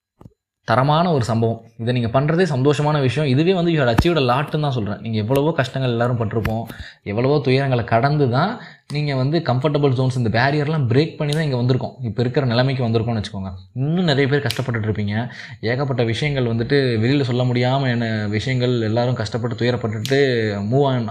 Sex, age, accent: male, 20-39, native